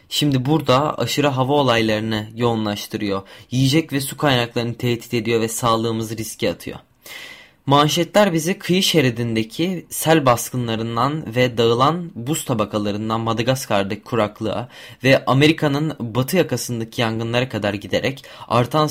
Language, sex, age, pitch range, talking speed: Turkish, male, 20-39, 115-145 Hz, 115 wpm